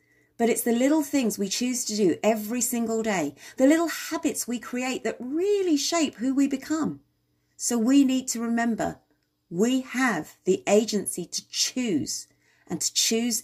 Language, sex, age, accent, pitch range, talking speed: English, female, 40-59, British, 195-290 Hz, 165 wpm